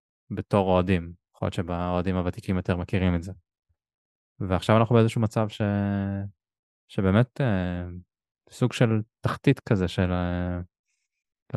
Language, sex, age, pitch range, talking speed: Hebrew, male, 20-39, 90-105 Hz, 120 wpm